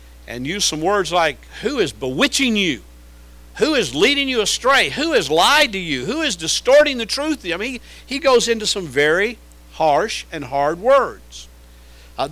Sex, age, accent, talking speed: male, 50-69, American, 175 wpm